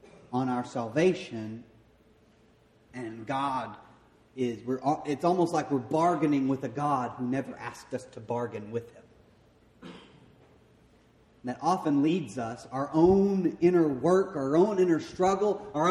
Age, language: 30-49, English